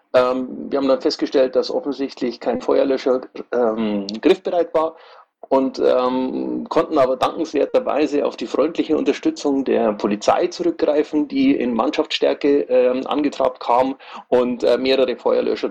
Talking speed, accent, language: 130 wpm, German, German